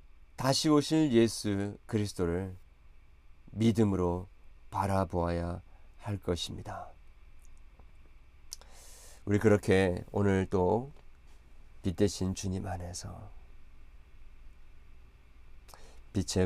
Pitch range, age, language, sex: 75-100 Hz, 40-59, Korean, male